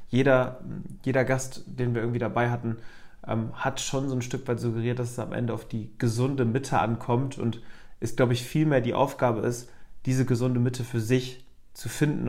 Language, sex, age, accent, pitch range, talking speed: German, male, 30-49, German, 110-125 Hz, 195 wpm